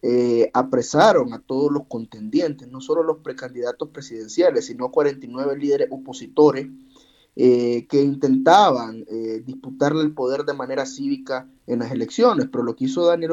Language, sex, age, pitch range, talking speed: Spanish, male, 30-49, 130-150 Hz, 150 wpm